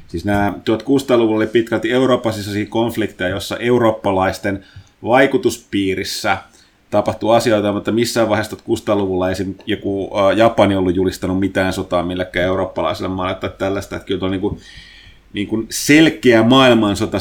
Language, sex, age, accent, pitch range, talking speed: Finnish, male, 30-49, native, 95-110 Hz, 130 wpm